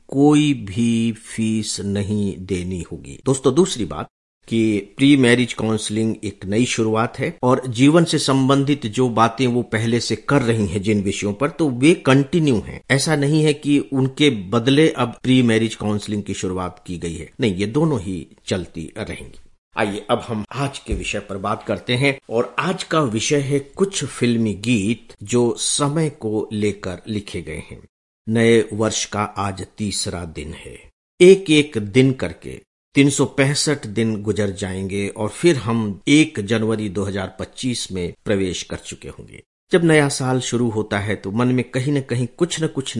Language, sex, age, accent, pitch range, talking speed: English, male, 50-69, Indian, 105-140 Hz, 140 wpm